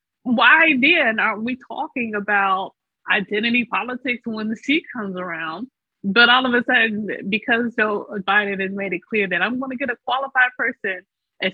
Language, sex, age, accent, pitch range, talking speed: English, female, 30-49, American, 180-255 Hz, 165 wpm